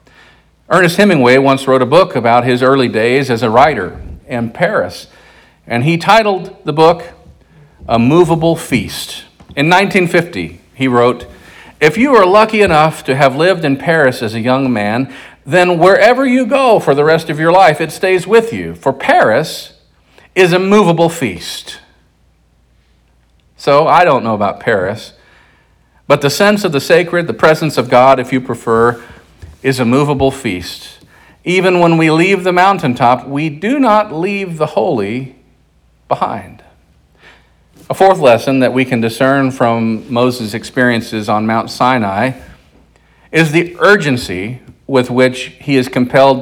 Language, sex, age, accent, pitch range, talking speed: English, male, 50-69, American, 120-165 Hz, 155 wpm